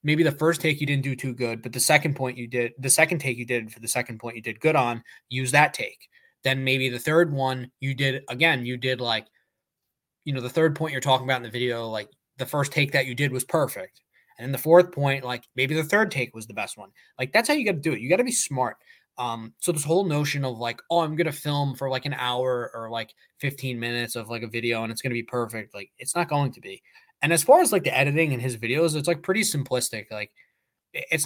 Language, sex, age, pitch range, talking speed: English, male, 20-39, 120-150 Hz, 270 wpm